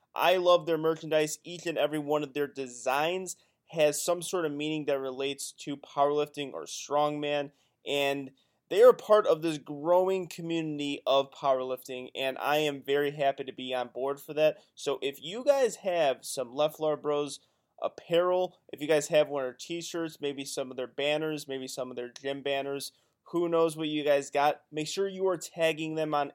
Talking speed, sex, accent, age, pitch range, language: 190 wpm, male, American, 20-39, 140-165 Hz, English